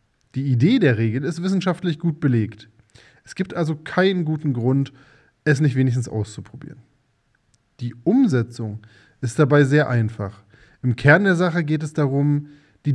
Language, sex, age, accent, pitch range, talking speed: German, male, 20-39, German, 115-155 Hz, 150 wpm